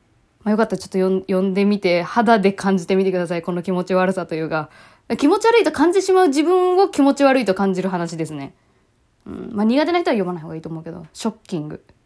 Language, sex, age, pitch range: Japanese, female, 20-39, 185-275 Hz